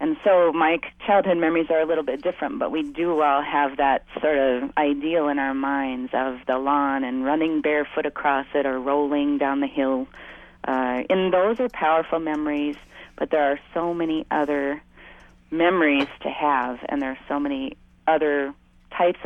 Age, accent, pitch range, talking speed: 30-49, American, 140-165 Hz, 180 wpm